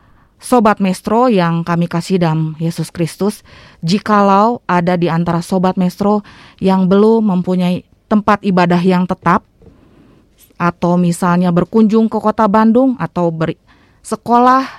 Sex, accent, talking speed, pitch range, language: female, native, 120 wpm, 170-215 Hz, Indonesian